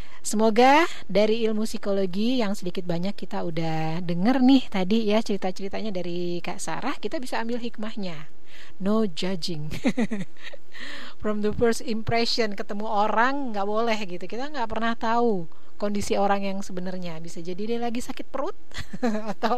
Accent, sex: native, female